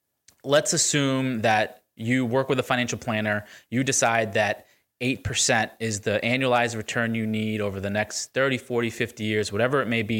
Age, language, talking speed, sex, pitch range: 20-39, English, 175 wpm, male, 105-130 Hz